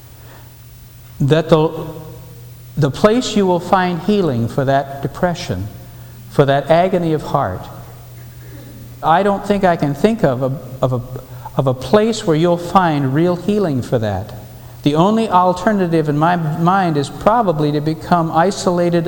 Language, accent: English, American